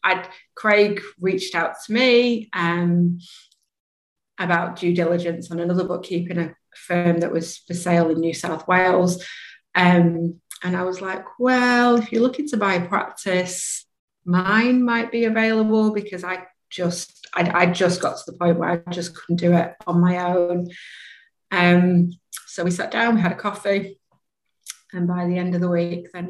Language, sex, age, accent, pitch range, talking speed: English, female, 30-49, British, 175-190 Hz, 170 wpm